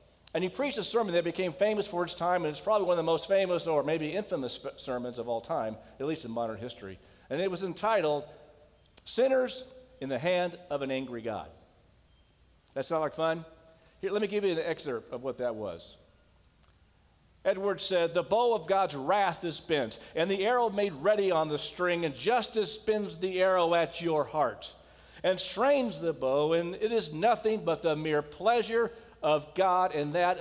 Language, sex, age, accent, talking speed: English, male, 50-69, American, 195 wpm